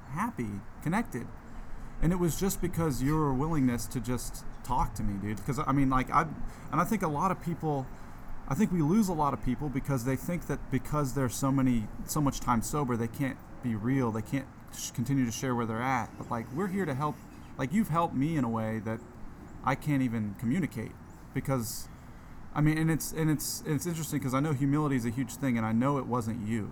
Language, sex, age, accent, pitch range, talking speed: English, male, 30-49, American, 115-145 Hz, 225 wpm